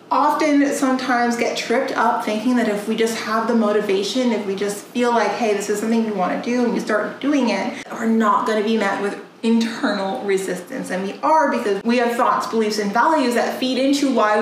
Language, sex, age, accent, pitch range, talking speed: English, female, 30-49, American, 205-250 Hz, 225 wpm